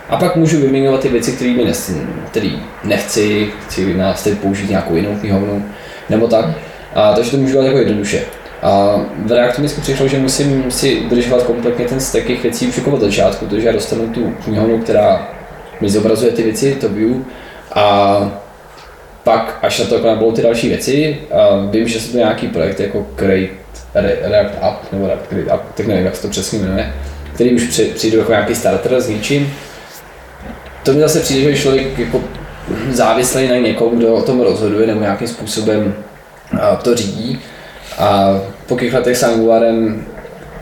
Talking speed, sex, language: 165 wpm, male, Czech